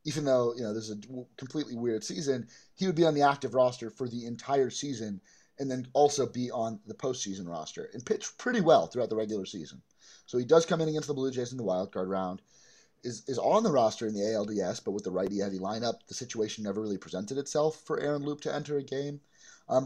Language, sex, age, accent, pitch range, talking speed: English, male, 30-49, American, 105-140 Hz, 235 wpm